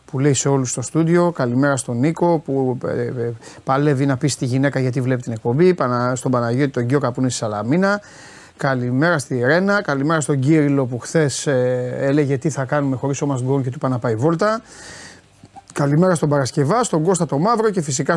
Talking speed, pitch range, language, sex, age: 200 wpm, 130-165 Hz, Greek, male, 30-49